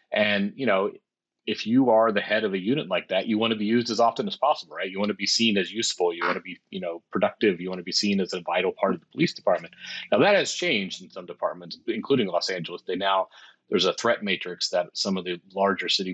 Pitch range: 90-110 Hz